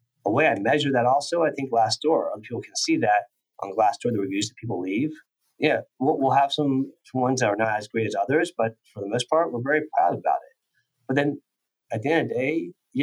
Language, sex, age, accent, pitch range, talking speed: English, male, 30-49, American, 110-145 Hz, 235 wpm